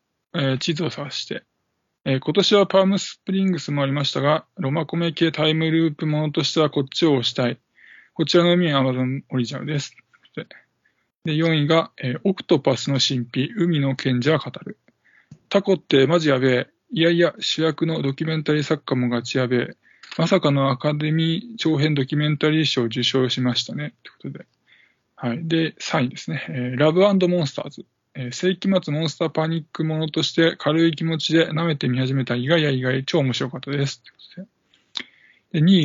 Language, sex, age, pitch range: Japanese, male, 20-39, 135-165 Hz